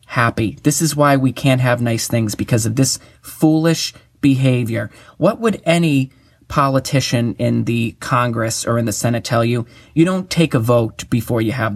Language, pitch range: English, 115-140 Hz